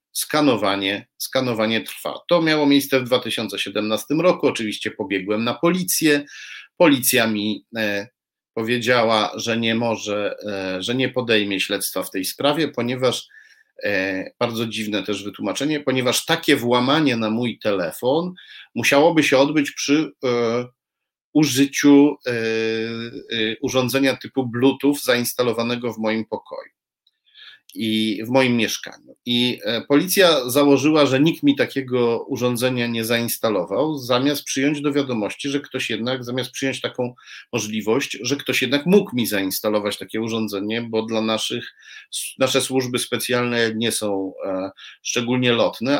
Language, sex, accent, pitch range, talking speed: Polish, male, native, 110-135 Hz, 130 wpm